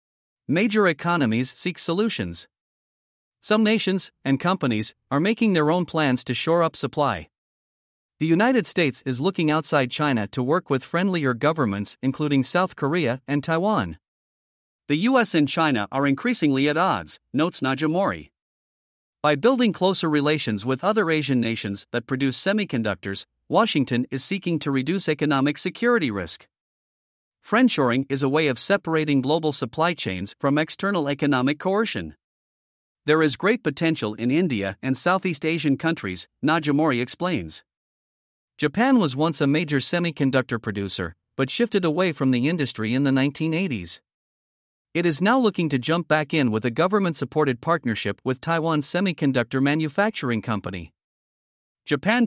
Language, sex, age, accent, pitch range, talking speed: English, male, 50-69, American, 125-175 Hz, 140 wpm